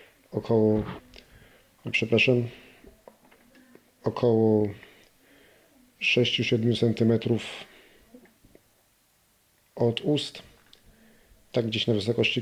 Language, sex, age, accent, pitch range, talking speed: Polish, male, 40-59, native, 115-130 Hz, 55 wpm